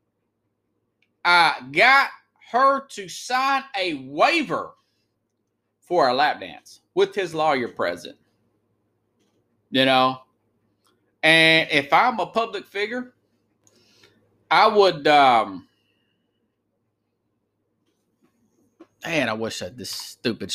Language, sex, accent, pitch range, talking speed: English, male, American, 140-225 Hz, 95 wpm